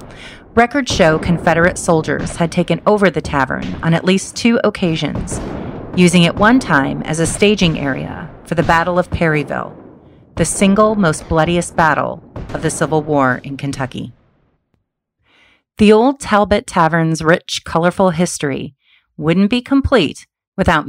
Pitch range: 150-205 Hz